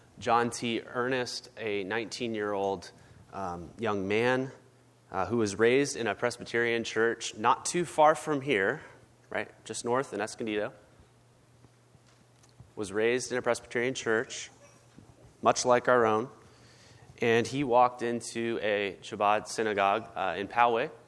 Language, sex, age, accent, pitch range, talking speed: English, male, 30-49, American, 100-120 Hz, 130 wpm